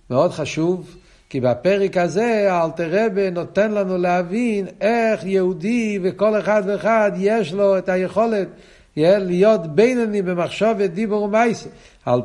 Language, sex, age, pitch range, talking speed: Hebrew, male, 60-79, 170-210 Hz, 120 wpm